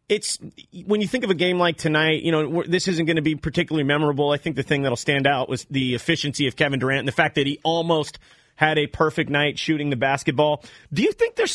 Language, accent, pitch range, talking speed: English, American, 155-195 Hz, 250 wpm